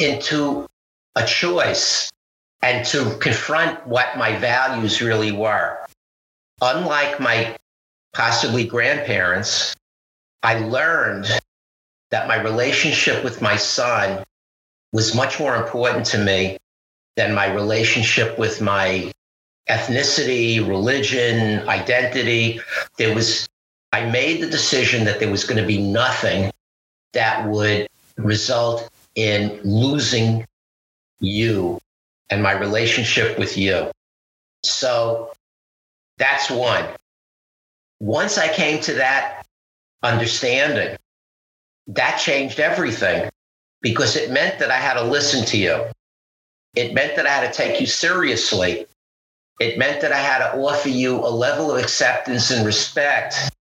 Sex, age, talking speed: male, 50-69, 115 wpm